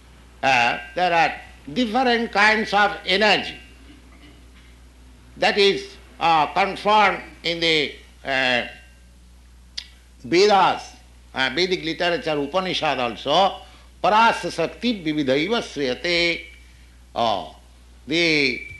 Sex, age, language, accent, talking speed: male, 60-79, English, Indian, 75 wpm